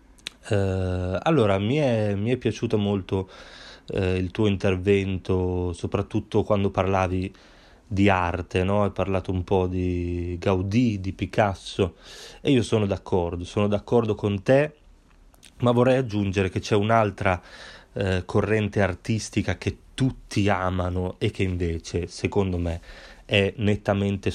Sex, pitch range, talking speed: male, 90-110 Hz, 120 wpm